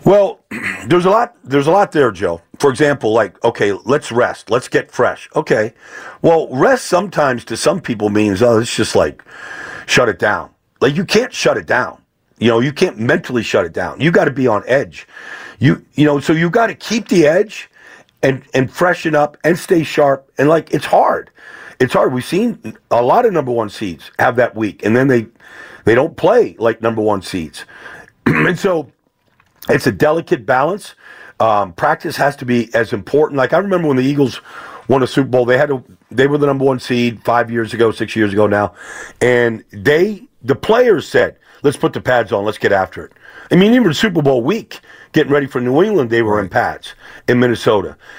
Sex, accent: male, American